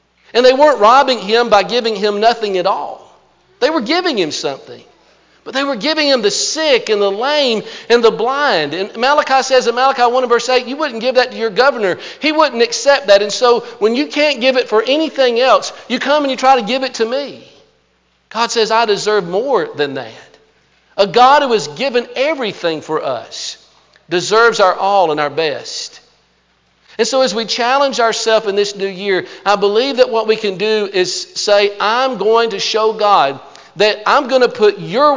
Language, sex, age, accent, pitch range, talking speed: English, male, 50-69, American, 205-270 Hz, 205 wpm